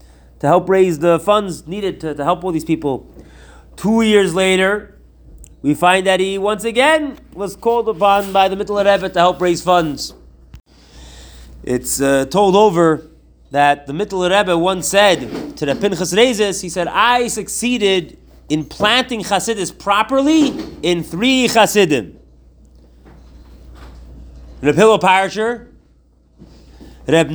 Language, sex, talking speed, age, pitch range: English, male, 135 wpm, 30-49, 130-200 Hz